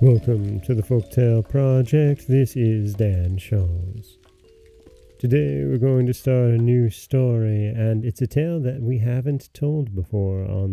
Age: 30-49